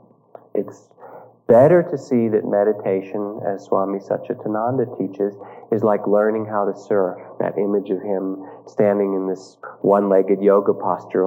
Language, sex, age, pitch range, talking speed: English, male, 30-49, 100-135 Hz, 140 wpm